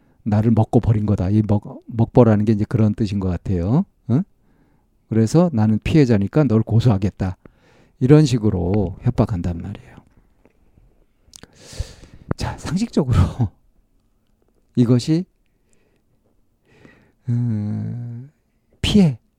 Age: 50-69